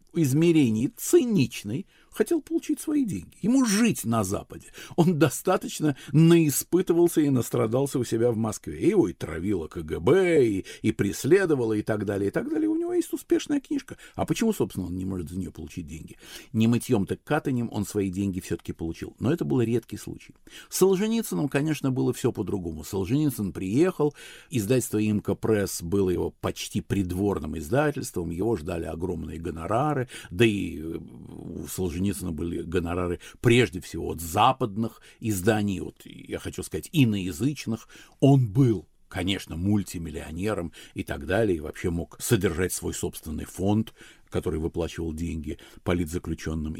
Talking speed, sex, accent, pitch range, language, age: 145 wpm, male, native, 85-140 Hz, Russian, 50-69